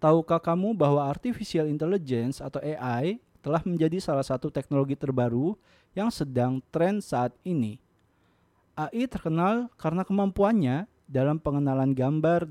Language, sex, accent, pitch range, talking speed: Indonesian, male, native, 135-175 Hz, 120 wpm